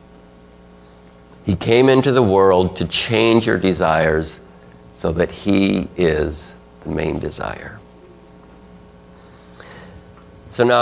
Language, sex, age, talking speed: English, male, 50-69, 100 wpm